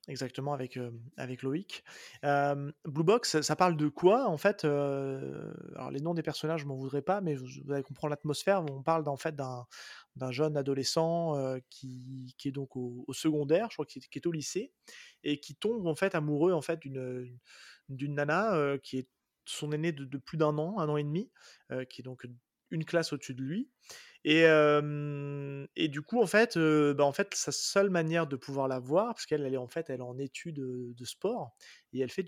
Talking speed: 230 wpm